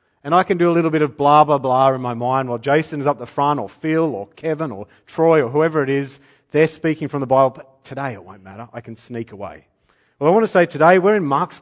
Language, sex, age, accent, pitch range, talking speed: English, male, 30-49, Australian, 125-160 Hz, 270 wpm